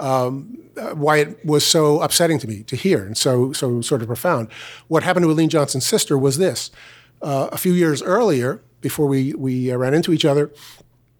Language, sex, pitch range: English, male, 130-155 Hz